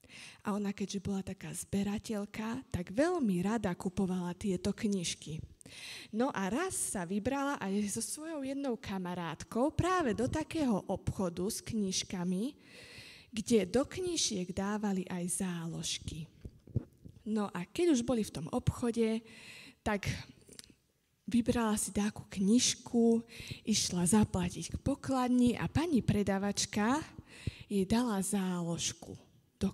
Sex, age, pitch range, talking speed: female, 20-39, 185-235 Hz, 115 wpm